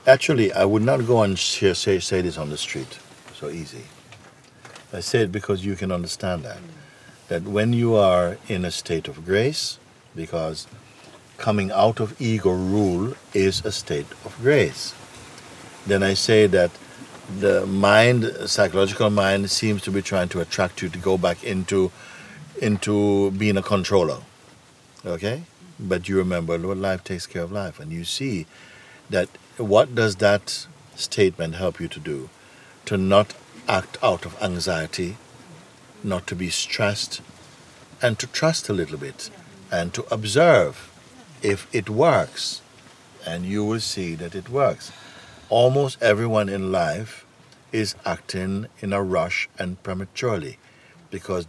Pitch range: 95-110 Hz